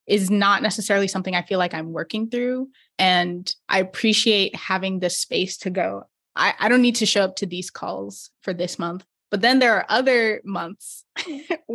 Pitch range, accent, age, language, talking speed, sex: 190-235 Hz, American, 20-39, English, 190 wpm, female